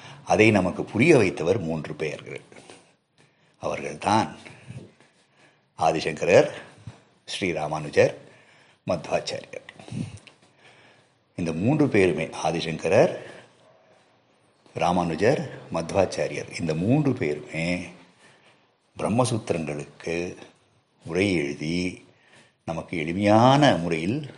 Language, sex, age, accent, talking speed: Tamil, male, 60-79, native, 60 wpm